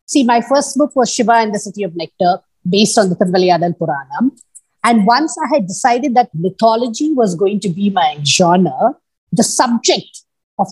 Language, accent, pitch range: English, Indian, 195-280 Hz